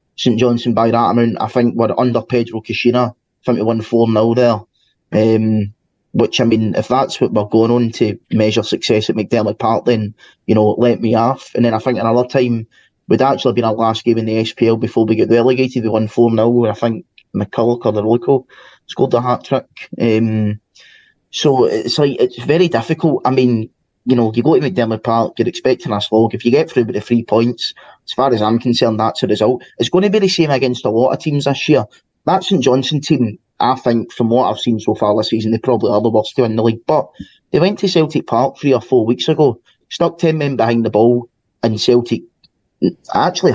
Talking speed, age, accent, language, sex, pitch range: 225 wpm, 20-39, British, English, male, 110-125 Hz